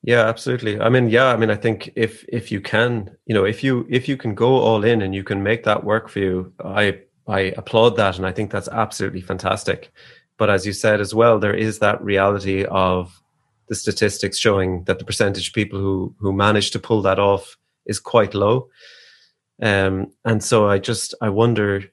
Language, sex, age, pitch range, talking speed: English, male, 30-49, 95-115 Hz, 210 wpm